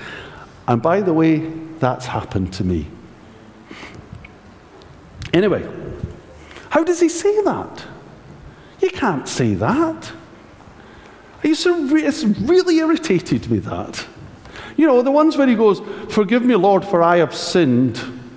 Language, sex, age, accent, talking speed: English, male, 50-69, British, 120 wpm